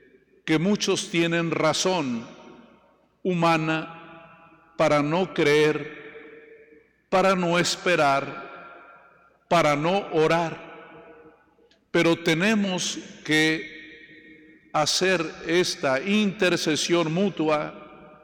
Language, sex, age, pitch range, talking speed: Spanish, male, 50-69, 150-180 Hz, 65 wpm